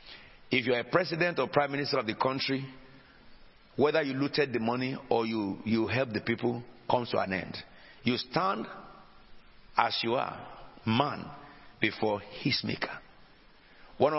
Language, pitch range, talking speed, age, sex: English, 115-145 Hz, 150 wpm, 60-79, male